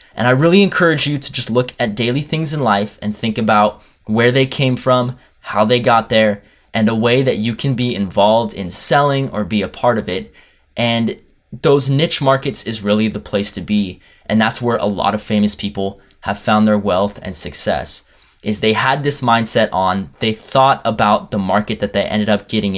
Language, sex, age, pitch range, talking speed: English, male, 20-39, 100-125 Hz, 210 wpm